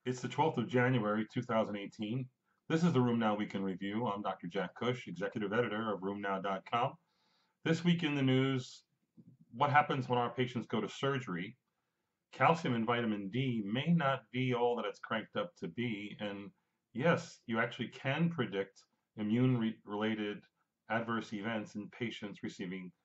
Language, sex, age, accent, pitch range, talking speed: English, male, 40-59, American, 110-130 Hz, 160 wpm